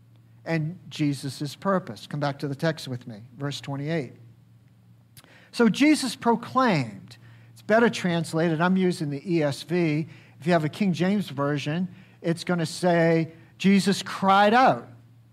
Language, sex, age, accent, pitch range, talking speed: English, male, 50-69, American, 140-225 Hz, 140 wpm